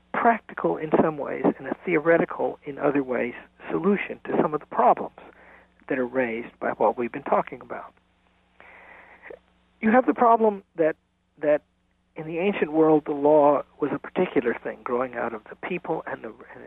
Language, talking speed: English, 175 wpm